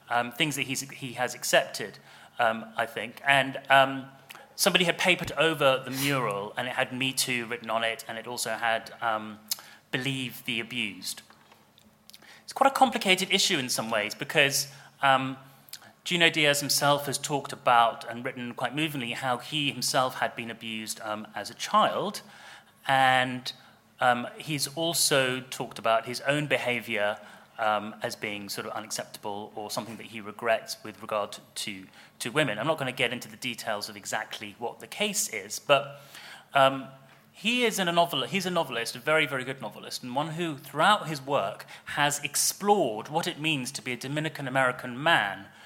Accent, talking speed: British, 170 wpm